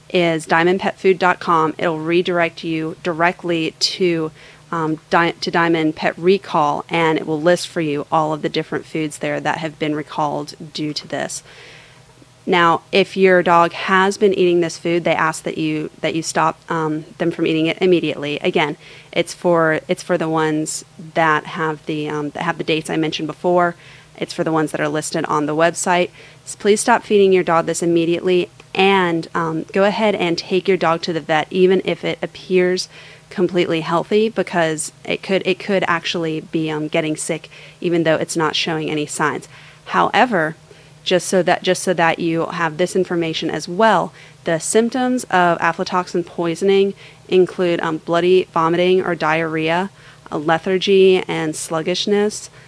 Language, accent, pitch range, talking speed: English, American, 155-180 Hz, 175 wpm